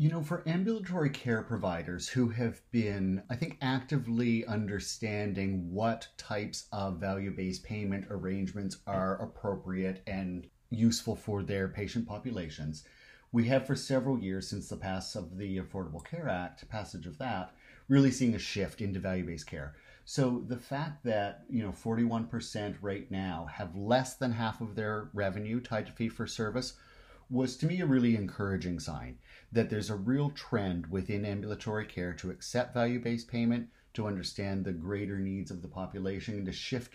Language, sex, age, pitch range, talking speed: English, male, 30-49, 95-120 Hz, 160 wpm